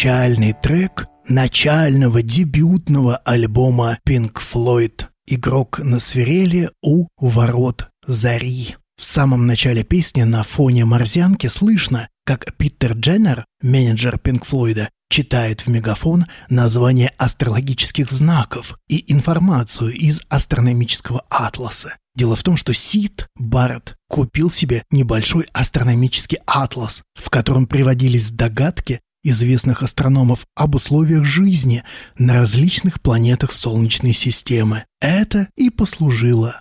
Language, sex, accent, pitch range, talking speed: Russian, male, native, 120-140 Hz, 110 wpm